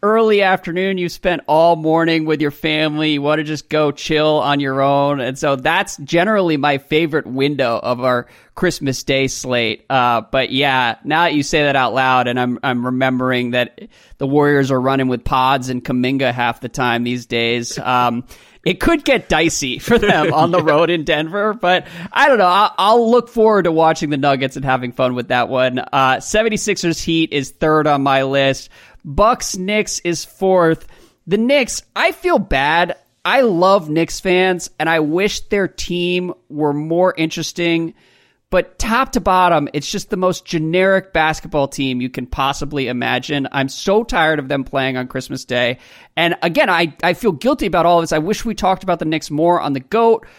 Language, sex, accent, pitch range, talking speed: English, male, American, 135-190 Hz, 195 wpm